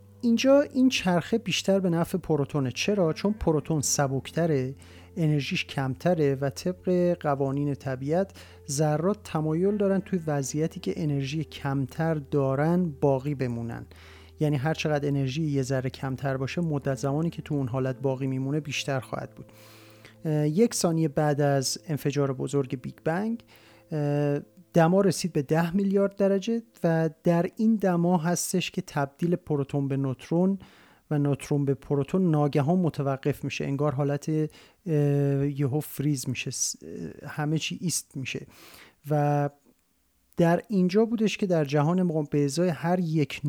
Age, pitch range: 40-59, 140-175 Hz